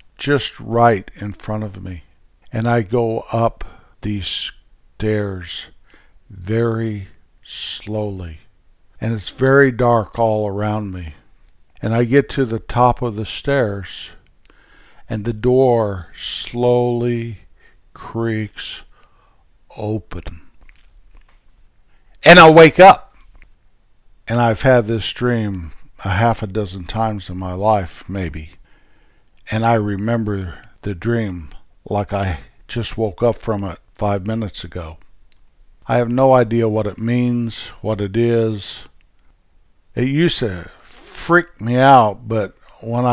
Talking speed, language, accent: 120 wpm, English, American